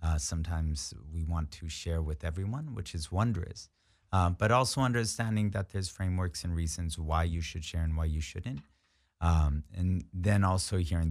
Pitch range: 80-90 Hz